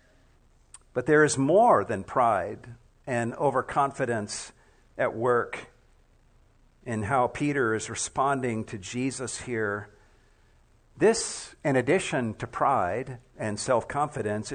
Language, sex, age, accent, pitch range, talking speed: English, male, 50-69, American, 120-155 Hz, 105 wpm